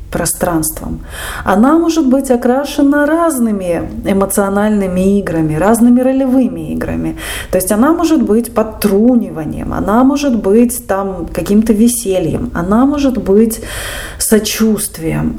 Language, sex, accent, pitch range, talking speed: Russian, female, native, 180-235 Hz, 100 wpm